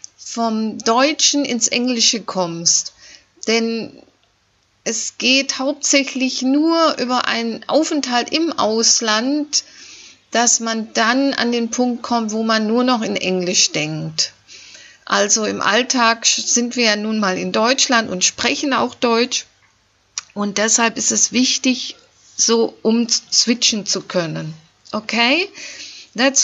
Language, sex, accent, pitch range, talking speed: German, female, German, 205-260 Hz, 125 wpm